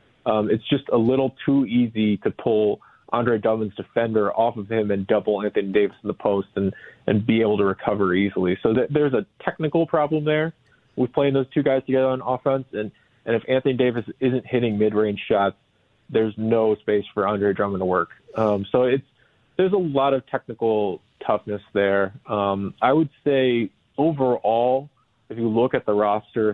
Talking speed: 185 wpm